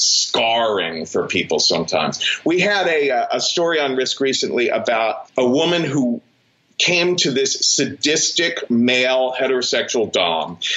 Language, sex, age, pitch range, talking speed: English, male, 40-59, 125-175 Hz, 130 wpm